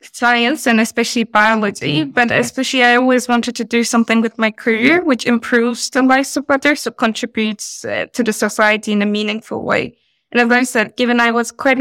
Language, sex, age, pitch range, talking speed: English, female, 20-39, 210-240 Hz, 200 wpm